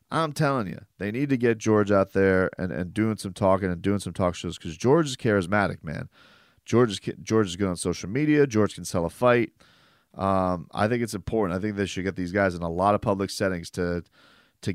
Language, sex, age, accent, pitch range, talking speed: English, male, 30-49, American, 90-110 Hz, 235 wpm